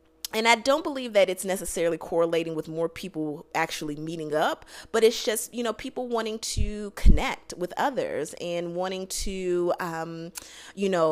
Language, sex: English, female